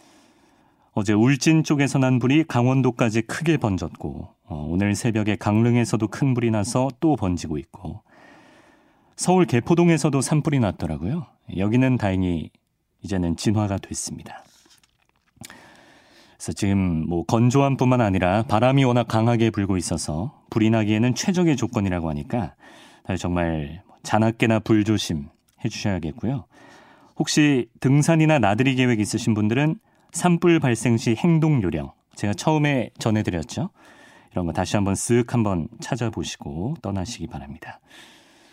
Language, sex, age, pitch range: Korean, male, 40-59, 100-140 Hz